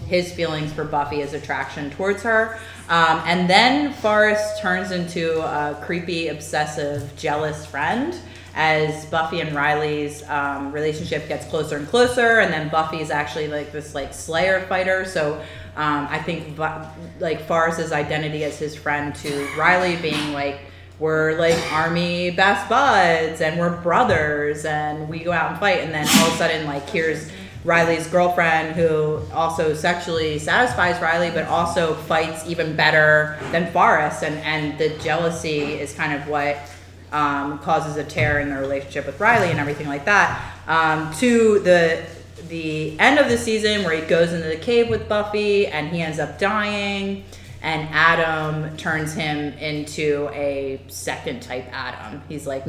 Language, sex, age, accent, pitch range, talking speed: English, female, 30-49, American, 145-170 Hz, 165 wpm